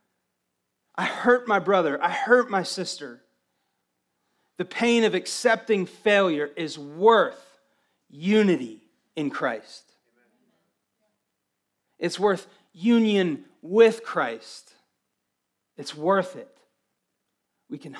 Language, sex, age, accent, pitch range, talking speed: English, male, 40-59, American, 135-200 Hz, 95 wpm